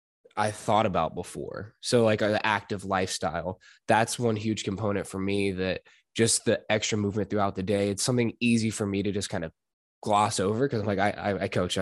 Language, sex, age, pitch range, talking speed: English, male, 10-29, 100-115 Hz, 205 wpm